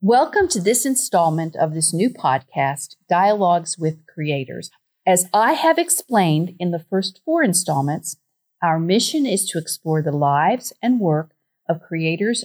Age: 50-69